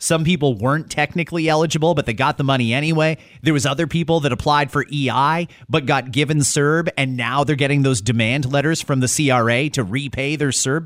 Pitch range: 125-175 Hz